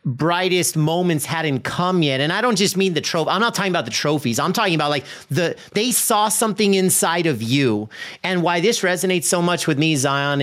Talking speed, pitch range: 220 wpm, 145-190 Hz